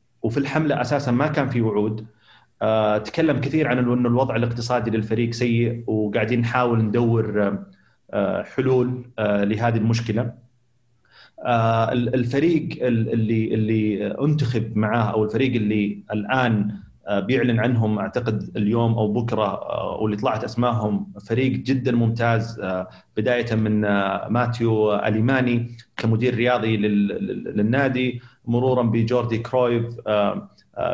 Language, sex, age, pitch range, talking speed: Arabic, male, 30-49, 110-125 Hz, 105 wpm